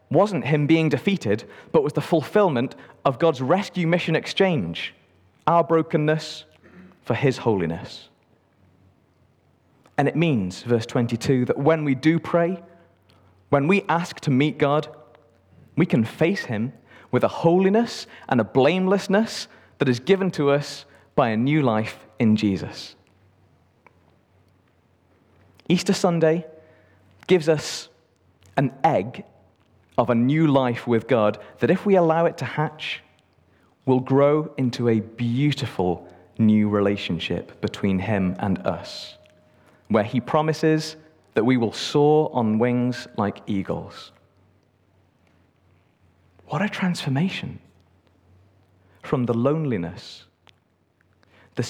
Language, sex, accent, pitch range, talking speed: English, male, British, 100-155 Hz, 120 wpm